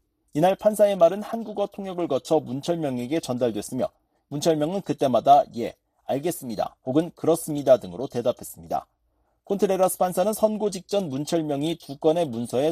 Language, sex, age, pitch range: Korean, male, 40-59, 140-190 Hz